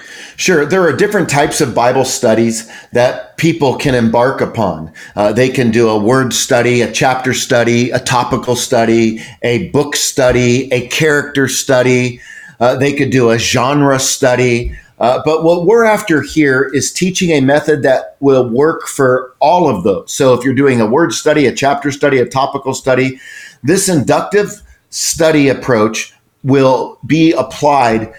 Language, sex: English, male